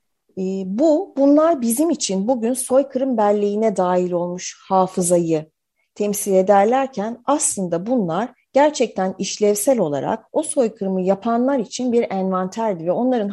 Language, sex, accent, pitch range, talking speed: Turkish, female, native, 180-245 Hz, 115 wpm